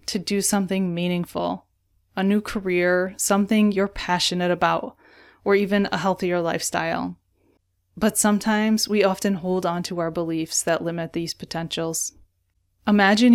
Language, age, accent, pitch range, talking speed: English, 20-39, American, 175-210 Hz, 135 wpm